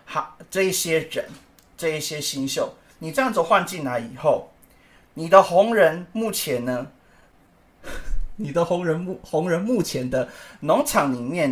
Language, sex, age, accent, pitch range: Chinese, male, 30-49, native, 130-180 Hz